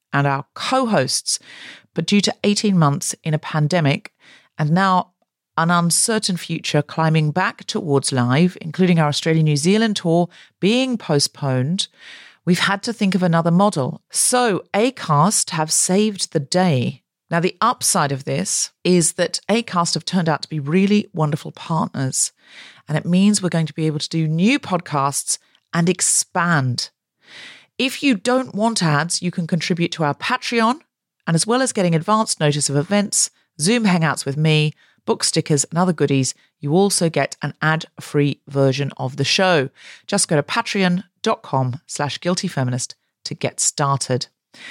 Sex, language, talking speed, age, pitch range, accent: female, English, 160 wpm, 40-59, 150-205 Hz, British